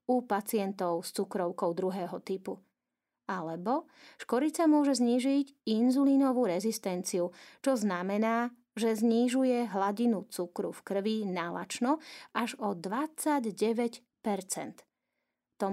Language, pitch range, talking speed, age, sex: Slovak, 195-255 Hz, 95 wpm, 30-49, female